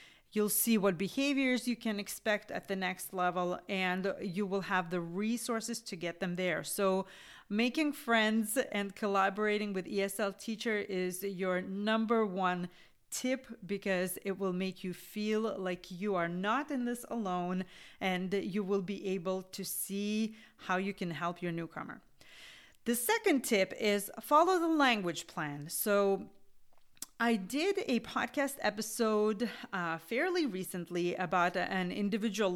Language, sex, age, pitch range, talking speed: English, female, 40-59, 185-230 Hz, 145 wpm